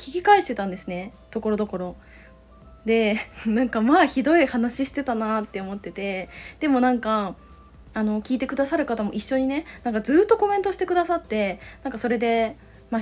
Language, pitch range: Japanese, 210-275 Hz